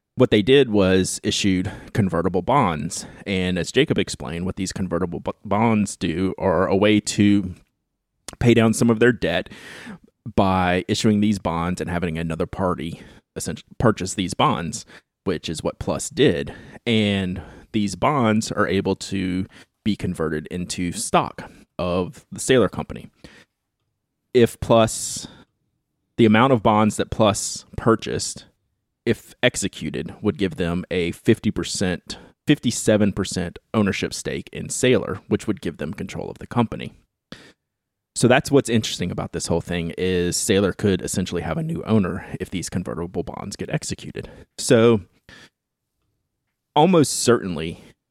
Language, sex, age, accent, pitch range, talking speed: English, male, 30-49, American, 90-110 Hz, 140 wpm